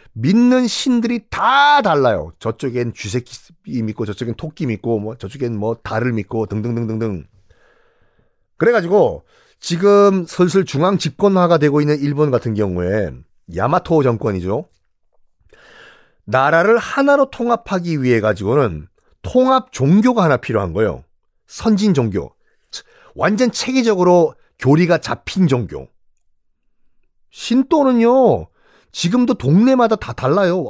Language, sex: Korean, male